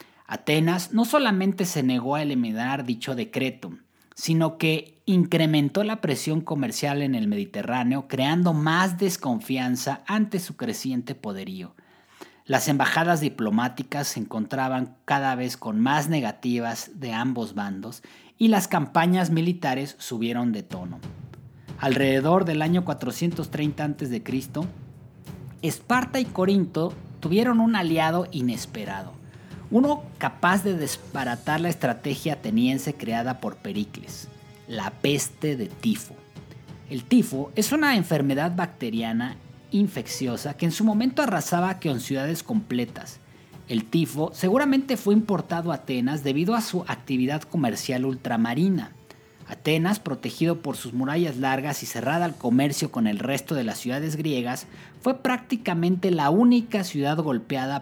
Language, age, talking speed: Spanish, 40-59, 130 wpm